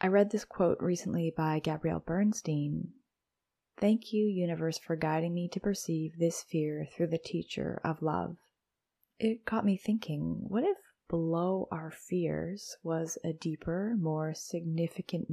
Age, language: 20-39, English